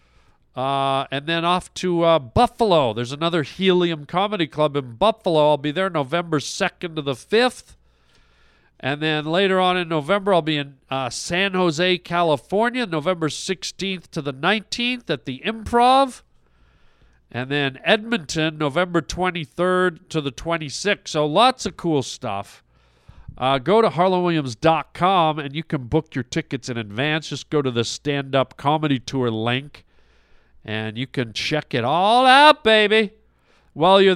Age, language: 50-69, English